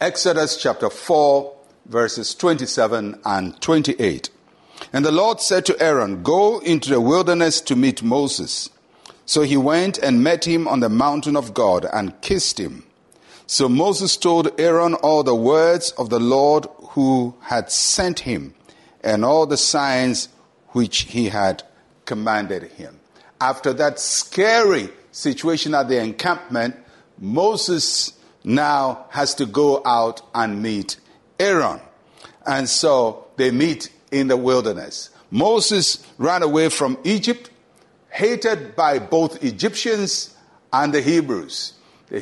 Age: 50-69